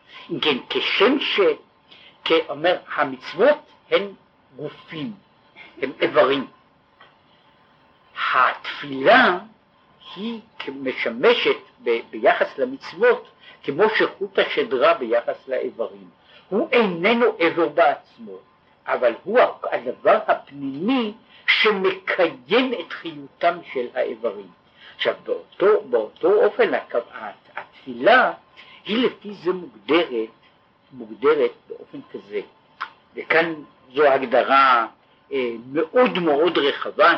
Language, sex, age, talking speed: Hebrew, male, 50-69, 85 wpm